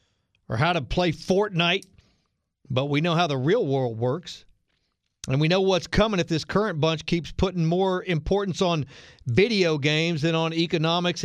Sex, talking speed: male, 170 wpm